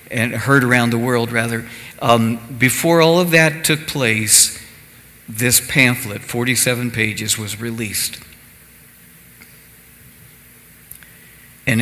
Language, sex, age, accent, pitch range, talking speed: English, male, 60-79, American, 110-130 Hz, 100 wpm